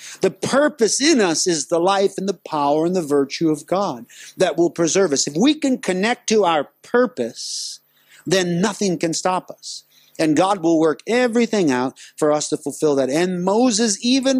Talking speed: 190 wpm